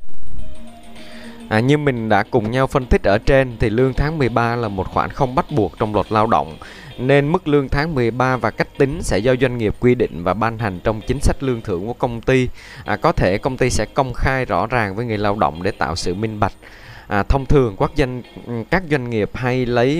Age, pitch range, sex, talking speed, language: 20-39, 105-130 Hz, male, 220 wpm, Vietnamese